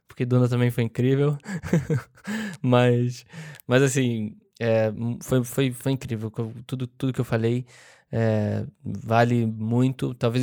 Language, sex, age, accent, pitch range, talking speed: Portuguese, male, 10-29, Brazilian, 115-135 Hz, 125 wpm